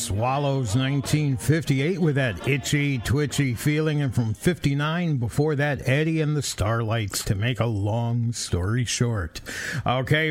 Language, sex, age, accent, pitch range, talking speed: English, male, 60-79, American, 120-155 Hz, 135 wpm